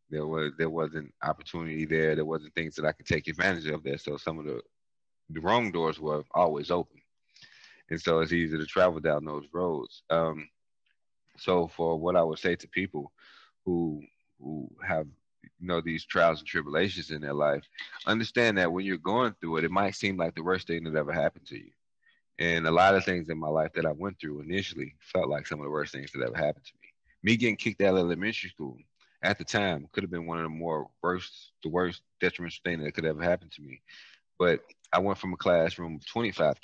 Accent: American